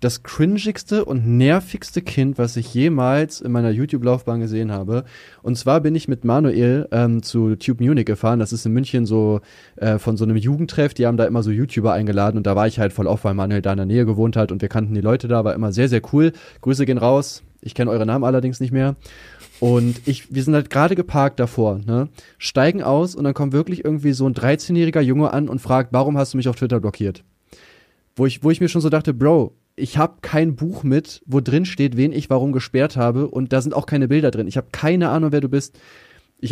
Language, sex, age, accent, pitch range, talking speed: German, male, 20-39, German, 115-145 Hz, 235 wpm